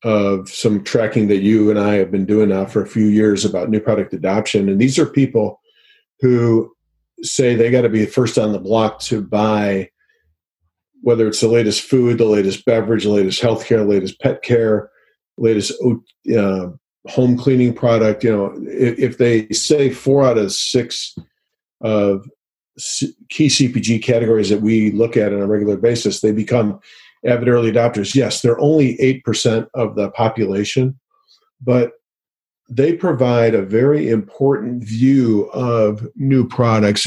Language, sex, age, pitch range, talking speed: English, male, 40-59, 105-125 Hz, 165 wpm